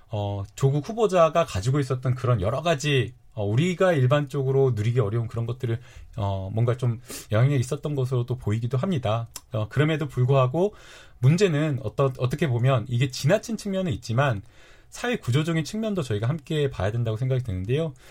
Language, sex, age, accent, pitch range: Korean, male, 30-49, native, 125-165 Hz